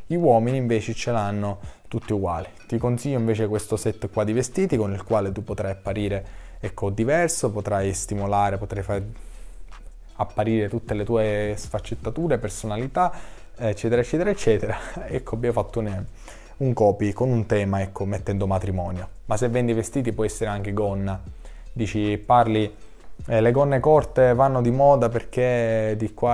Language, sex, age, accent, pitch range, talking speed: Italian, male, 20-39, native, 100-120 Hz, 155 wpm